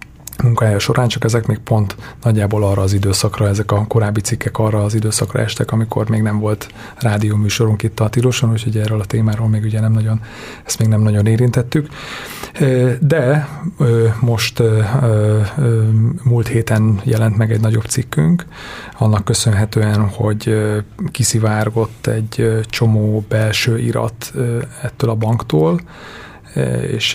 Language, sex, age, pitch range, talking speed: Hungarian, male, 30-49, 110-125 Hz, 135 wpm